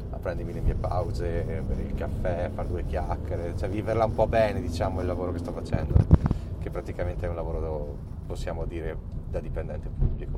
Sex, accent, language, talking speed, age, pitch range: male, native, Italian, 185 wpm, 30-49, 80-105 Hz